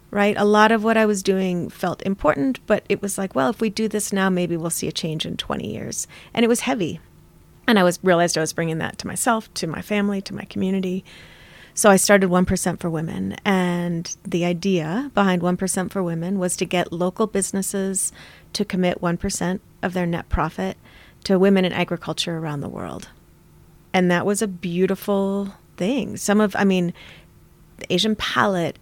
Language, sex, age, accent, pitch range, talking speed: English, female, 30-49, American, 175-195 Hz, 190 wpm